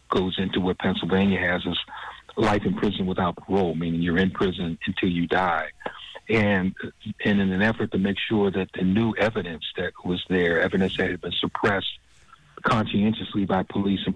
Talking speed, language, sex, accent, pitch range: 180 wpm, English, male, American, 85-100 Hz